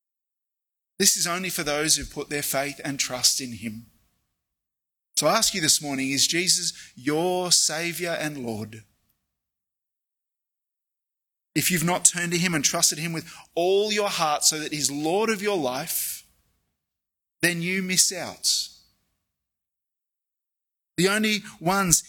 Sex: male